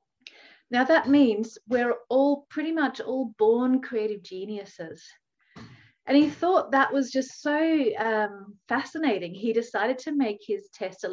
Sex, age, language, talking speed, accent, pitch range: female, 30-49, English, 145 wpm, Australian, 200-270 Hz